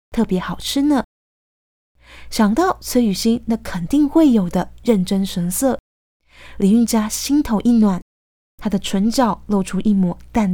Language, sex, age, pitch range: Chinese, female, 20-39, 190-275 Hz